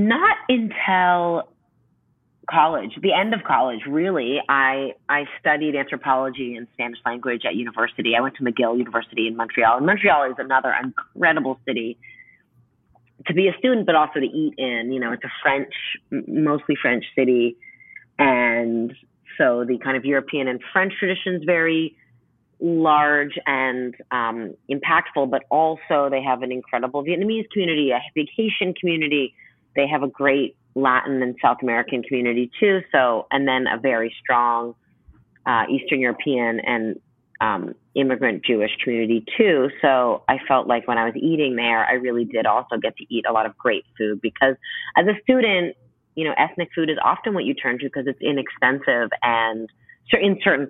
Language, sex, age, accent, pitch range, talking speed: English, female, 30-49, American, 120-160 Hz, 165 wpm